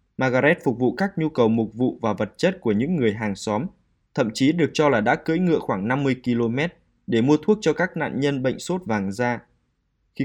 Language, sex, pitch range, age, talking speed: Vietnamese, male, 115-145 Hz, 20-39, 230 wpm